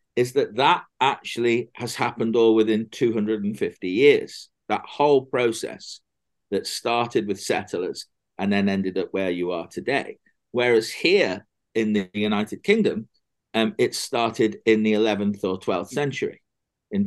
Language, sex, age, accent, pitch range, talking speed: English, male, 40-59, British, 105-165 Hz, 145 wpm